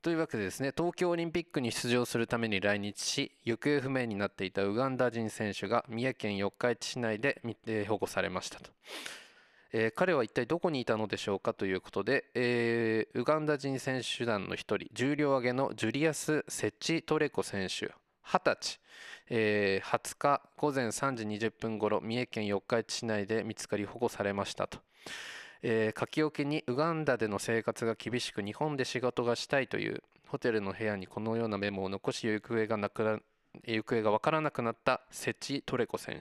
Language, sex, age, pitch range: Japanese, male, 20-39, 105-135 Hz